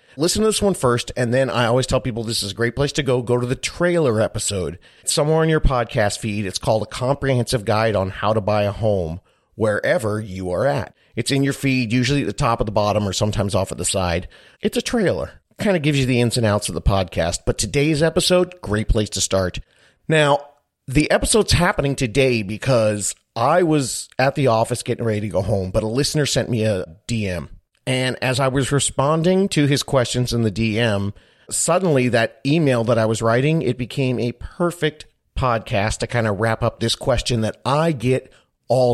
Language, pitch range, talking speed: English, 110-145 Hz, 215 wpm